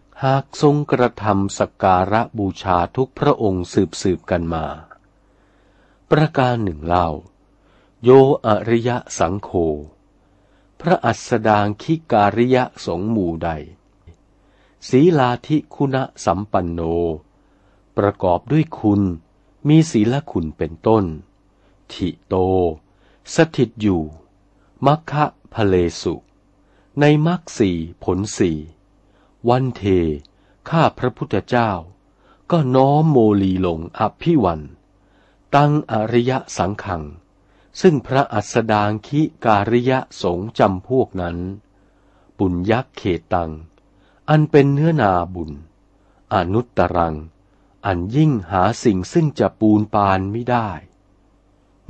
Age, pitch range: 60-79, 95-125 Hz